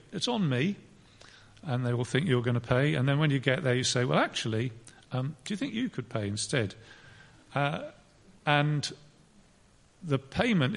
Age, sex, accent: 40-59, male, British